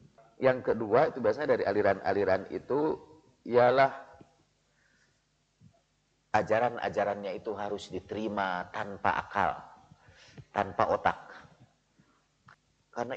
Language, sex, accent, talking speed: Indonesian, male, native, 75 wpm